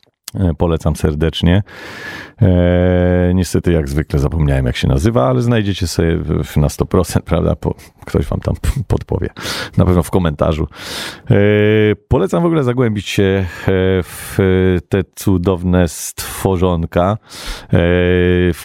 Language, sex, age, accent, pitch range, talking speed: Polish, male, 40-59, native, 80-100 Hz, 105 wpm